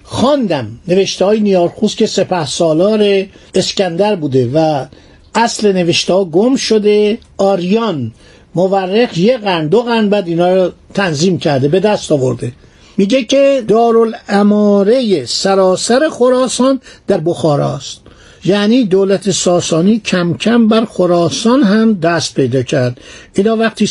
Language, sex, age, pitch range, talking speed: Persian, male, 60-79, 170-220 Hz, 125 wpm